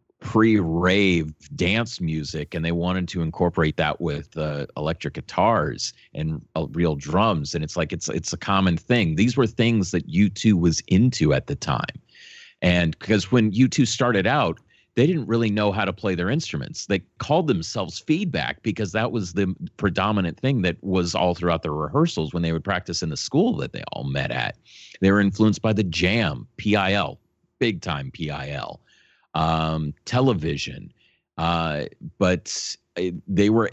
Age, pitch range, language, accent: 30-49, 80-105 Hz, English, American